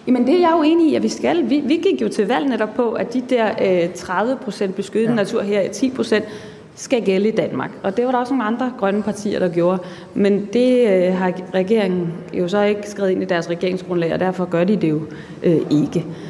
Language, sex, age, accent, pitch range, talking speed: Danish, female, 30-49, native, 170-215 Hz, 235 wpm